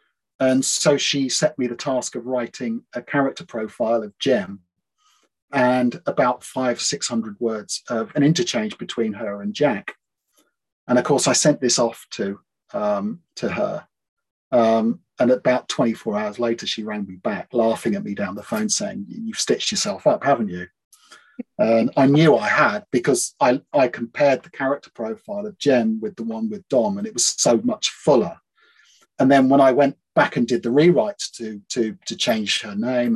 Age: 40-59